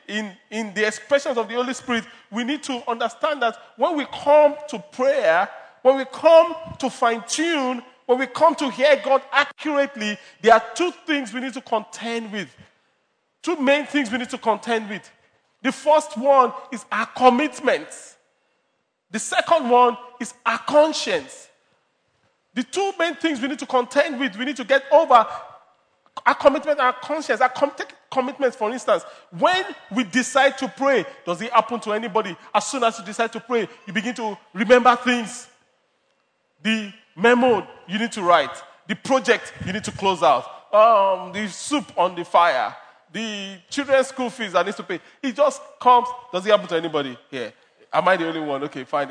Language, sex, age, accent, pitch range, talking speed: English, male, 40-59, Nigerian, 210-280 Hz, 180 wpm